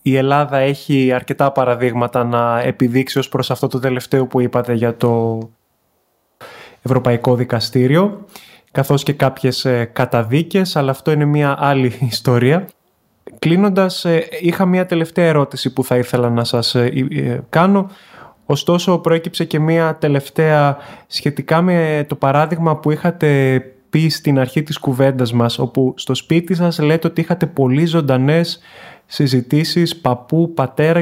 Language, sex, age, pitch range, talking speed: Greek, male, 20-39, 135-170 Hz, 130 wpm